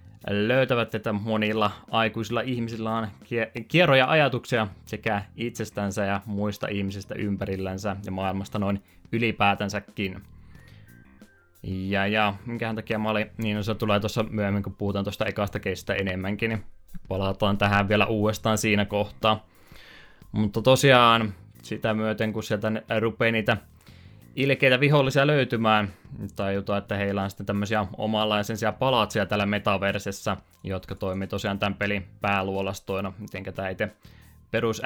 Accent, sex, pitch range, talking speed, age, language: native, male, 100-110 Hz, 125 wpm, 20-39, Finnish